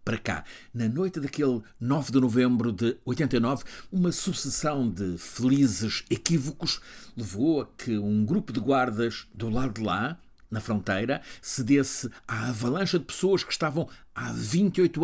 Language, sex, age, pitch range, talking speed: Portuguese, male, 60-79, 105-140 Hz, 150 wpm